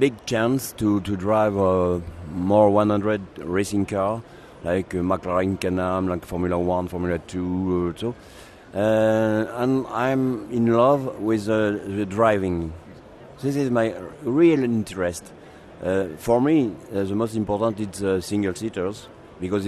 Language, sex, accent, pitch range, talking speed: English, male, French, 95-115 Hz, 150 wpm